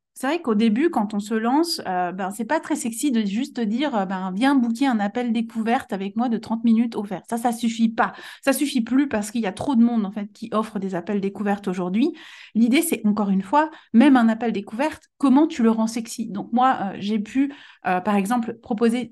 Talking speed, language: 245 wpm, French